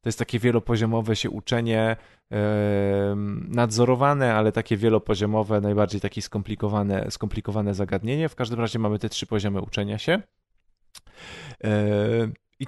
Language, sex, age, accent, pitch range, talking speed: Polish, male, 20-39, native, 105-120 Hz, 120 wpm